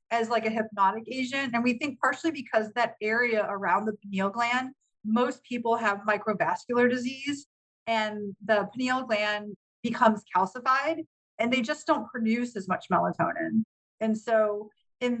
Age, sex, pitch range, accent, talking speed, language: 30-49, female, 200-245 Hz, American, 150 wpm, English